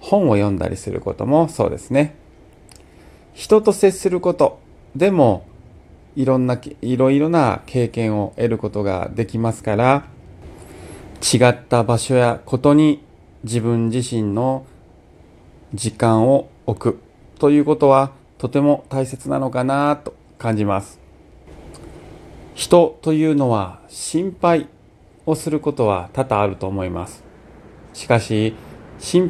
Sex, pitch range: male, 105-145 Hz